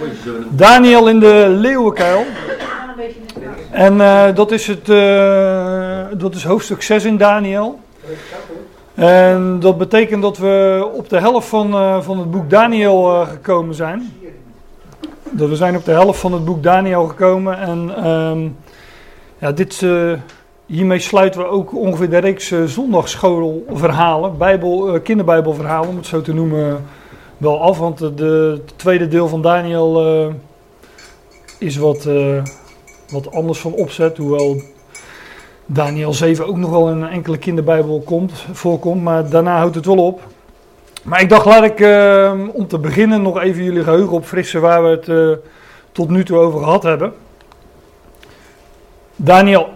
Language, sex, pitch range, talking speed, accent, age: Dutch, male, 160-195 Hz, 145 wpm, Dutch, 40-59